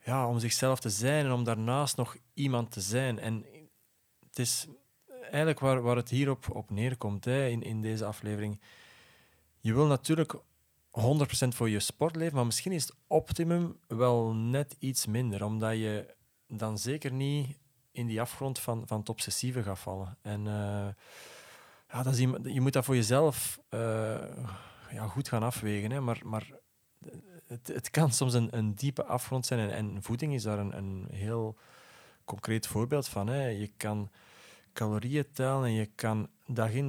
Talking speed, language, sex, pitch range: 160 wpm, Dutch, male, 110-130 Hz